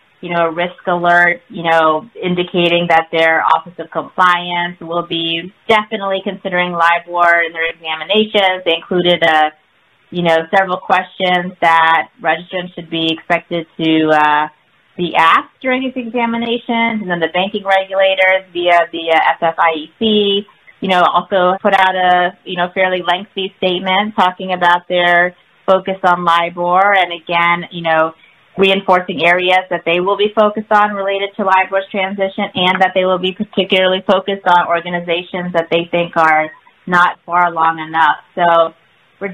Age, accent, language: 30-49, American, English